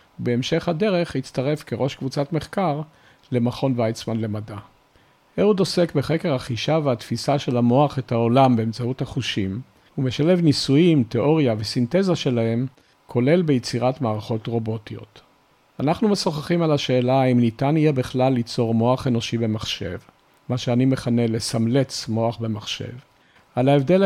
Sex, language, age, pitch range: male, Hebrew, 50-69, 120-145 Hz